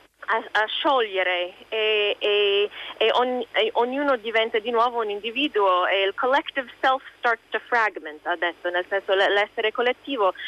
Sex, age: female, 30-49